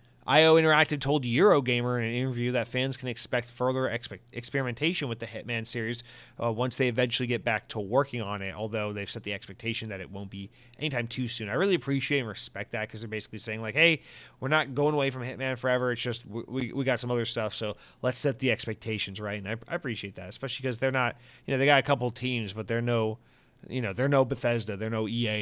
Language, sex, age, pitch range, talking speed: English, male, 30-49, 110-130 Hz, 240 wpm